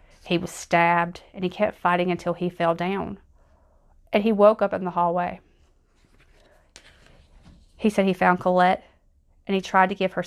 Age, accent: 30-49, American